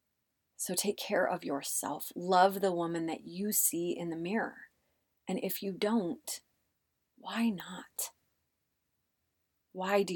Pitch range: 165-195 Hz